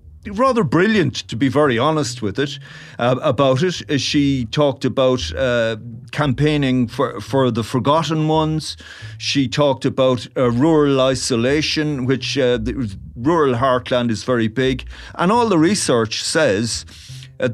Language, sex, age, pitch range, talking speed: English, male, 40-59, 115-145 Hz, 135 wpm